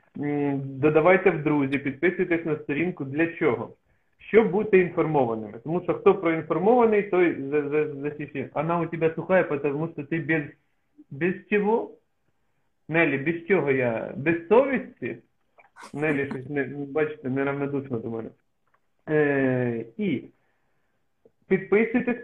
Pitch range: 140-185 Hz